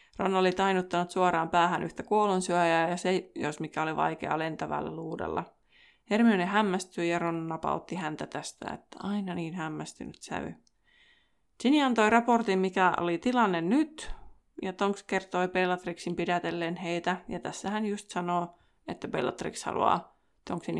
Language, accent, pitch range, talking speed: Finnish, native, 175-205 Hz, 140 wpm